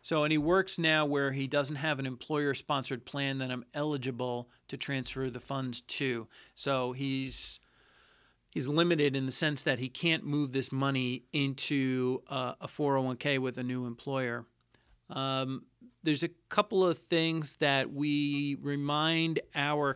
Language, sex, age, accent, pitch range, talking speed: English, male, 40-59, American, 130-155 Hz, 155 wpm